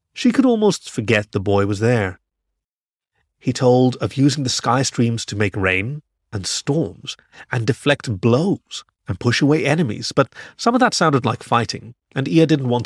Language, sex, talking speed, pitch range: English, male, 175 wpm, 100-140 Hz